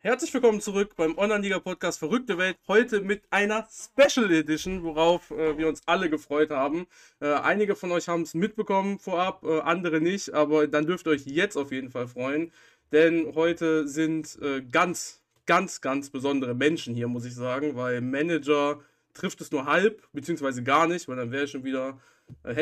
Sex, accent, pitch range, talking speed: male, German, 140-185 Hz, 175 wpm